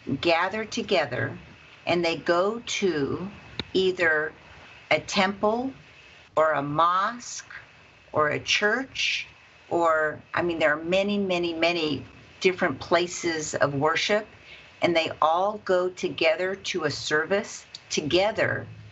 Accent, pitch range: American, 155-195 Hz